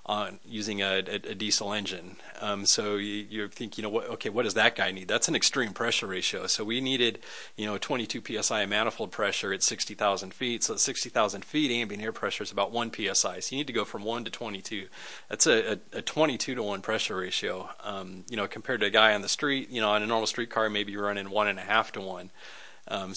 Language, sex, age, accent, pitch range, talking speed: English, male, 30-49, American, 100-120 Hz, 260 wpm